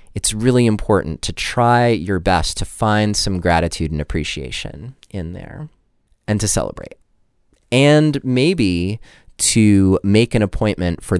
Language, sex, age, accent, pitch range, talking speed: English, male, 30-49, American, 85-110 Hz, 135 wpm